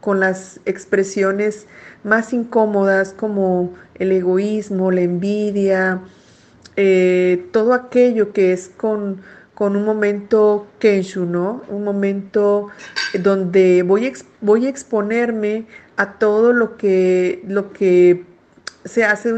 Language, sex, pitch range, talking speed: Spanish, female, 190-220 Hz, 110 wpm